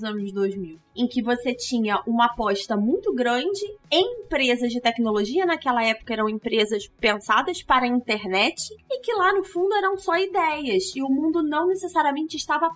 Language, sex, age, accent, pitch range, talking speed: Portuguese, female, 20-39, Brazilian, 215-330 Hz, 170 wpm